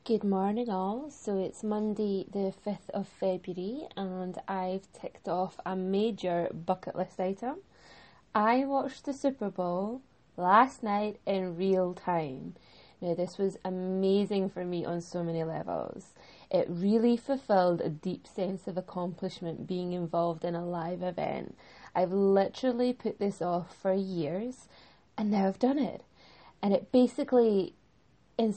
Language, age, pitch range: English, 20-39, 180-210 Hz